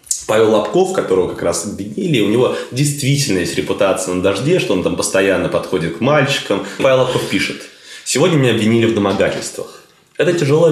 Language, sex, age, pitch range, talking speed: Russian, male, 20-39, 85-115 Hz, 170 wpm